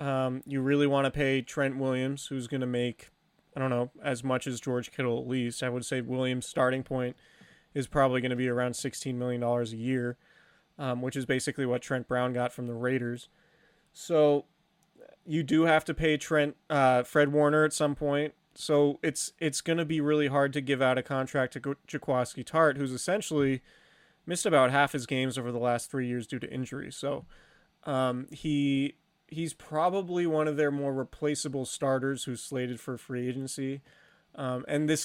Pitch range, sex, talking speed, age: 125-145 Hz, male, 195 wpm, 30-49